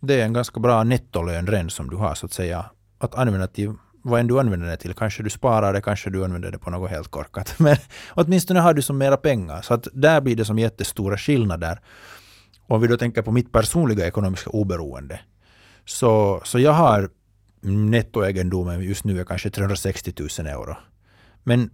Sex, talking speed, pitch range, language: male, 195 wpm, 95-115 Hz, Finnish